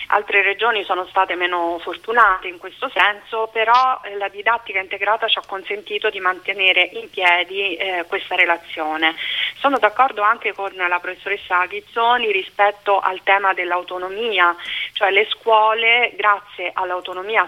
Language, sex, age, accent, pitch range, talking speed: Italian, female, 30-49, native, 180-215 Hz, 135 wpm